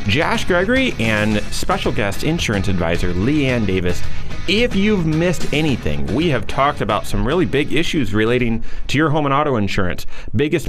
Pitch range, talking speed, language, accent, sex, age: 100-155 Hz, 165 wpm, English, American, male, 30-49